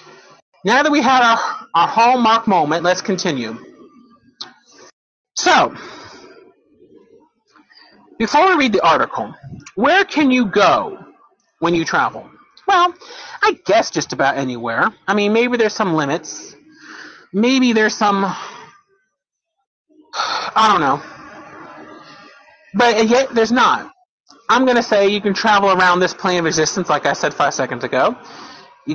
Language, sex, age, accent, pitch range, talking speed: English, male, 30-49, American, 170-275 Hz, 135 wpm